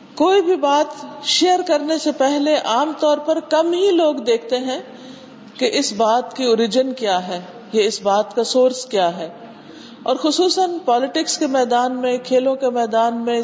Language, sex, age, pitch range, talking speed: Urdu, female, 50-69, 230-290 Hz, 175 wpm